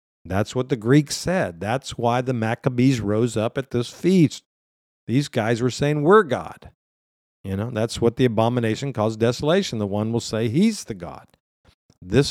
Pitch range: 110-150 Hz